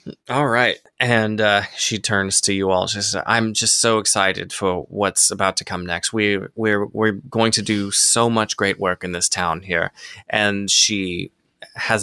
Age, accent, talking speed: 20-39, American, 195 wpm